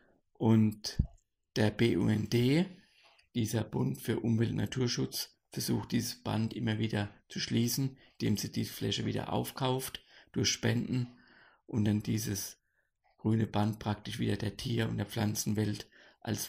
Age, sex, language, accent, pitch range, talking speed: 50-69, male, German, German, 110-145 Hz, 135 wpm